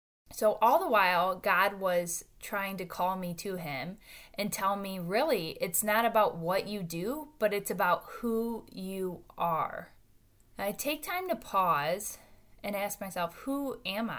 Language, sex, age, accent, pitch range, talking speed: English, female, 10-29, American, 175-225 Hz, 160 wpm